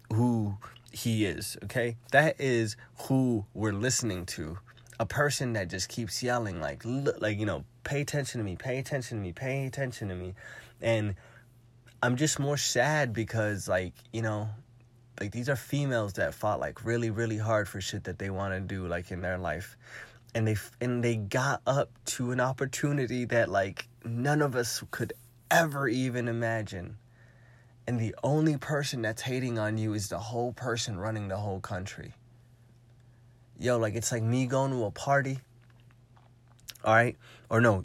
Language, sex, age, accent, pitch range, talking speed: English, male, 20-39, American, 105-120 Hz, 175 wpm